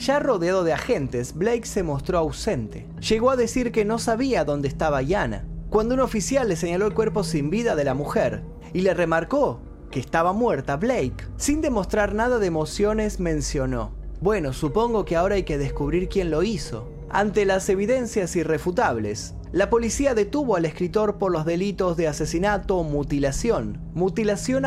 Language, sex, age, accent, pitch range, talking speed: Spanish, male, 30-49, Argentinian, 145-210 Hz, 165 wpm